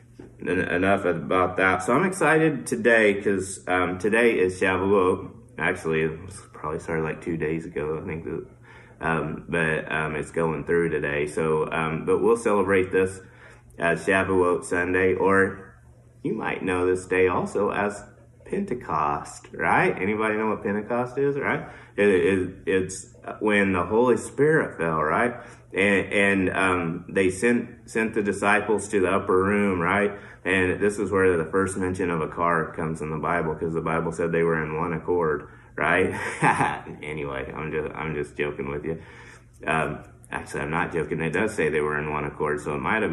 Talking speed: 175 wpm